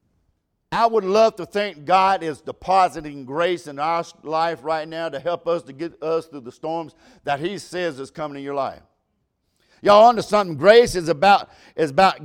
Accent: American